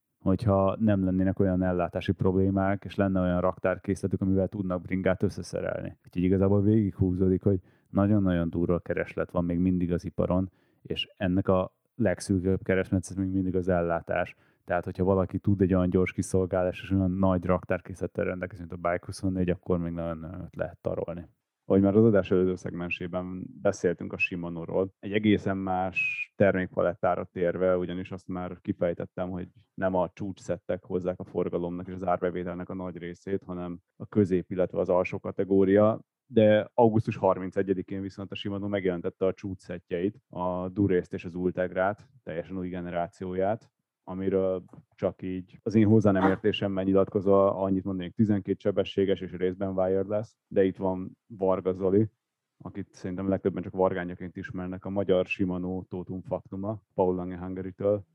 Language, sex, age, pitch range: Hungarian, male, 30-49, 90-100 Hz